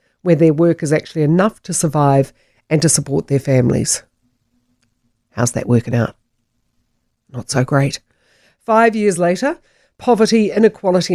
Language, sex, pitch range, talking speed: English, female, 130-175 Hz, 135 wpm